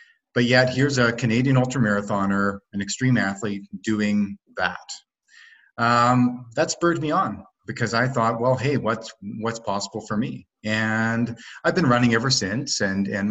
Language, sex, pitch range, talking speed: English, male, 110-135 Hz, 155 wpm